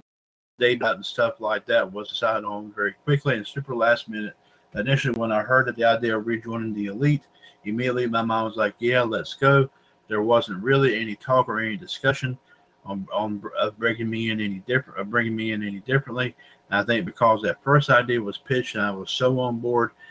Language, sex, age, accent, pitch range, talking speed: English, male, 50-69, American, 105-125 Hz, 205 wpm